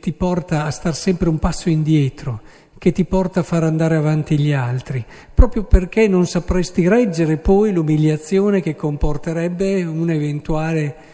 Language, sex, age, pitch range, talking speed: Italian, male, 50-69, 150-195 Hz, 145 wpm